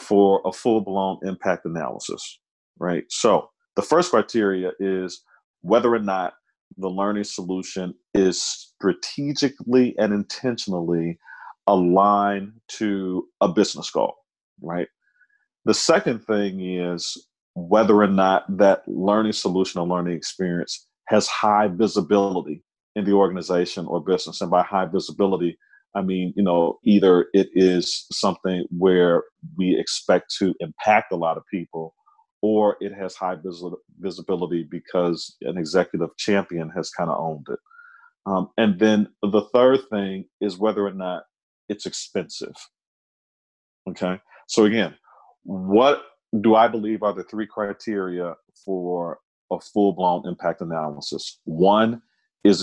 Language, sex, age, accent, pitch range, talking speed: English, male, 40-59, American, 90-105 Hz, 130 wpm